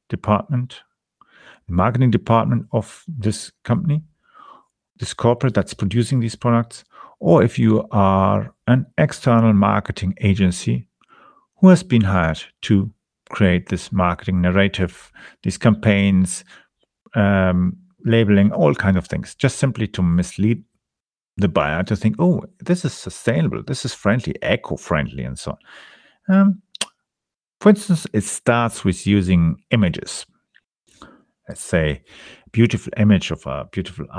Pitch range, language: 90-115 Hz, English